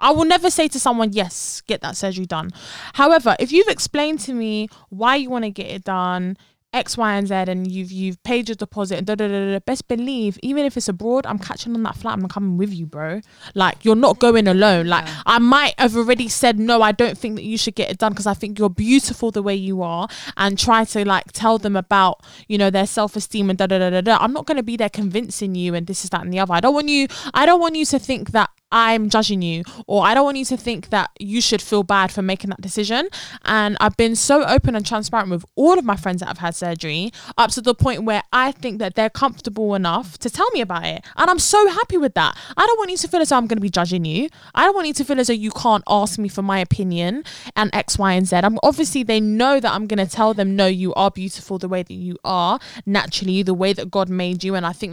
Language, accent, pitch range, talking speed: English, British, 190-250 Hz, 270 wpm